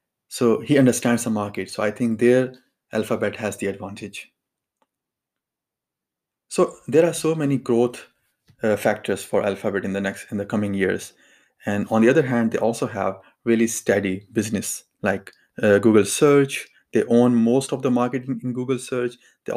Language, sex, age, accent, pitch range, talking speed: English, male, 20-39, Indian, 105-125 Hz, 170 wpm